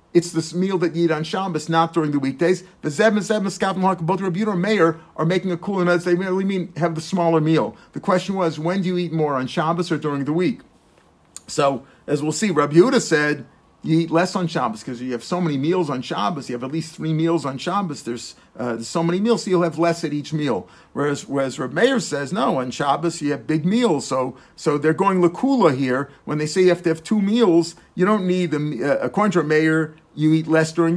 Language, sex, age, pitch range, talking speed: English, male, 50-69, 155-190 Hz, 255 wpm